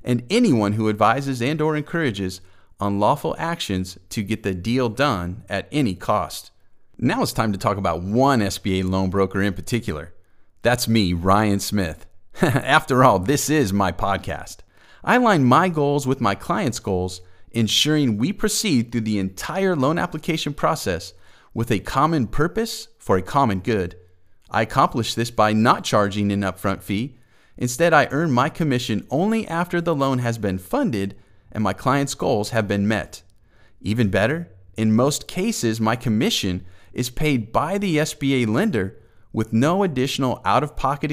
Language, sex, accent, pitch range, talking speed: English, male, American, 100-145 Hz, 160 wpm